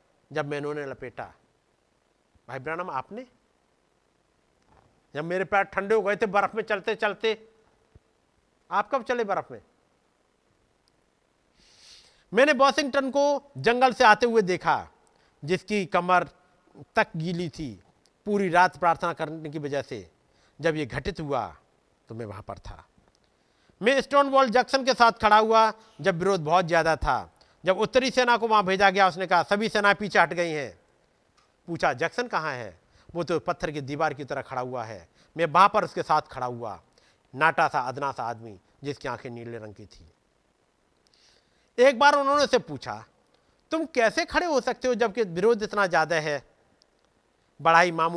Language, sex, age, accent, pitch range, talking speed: Hindi, male, 50-69, native, 145-220 Hz, 155 wpm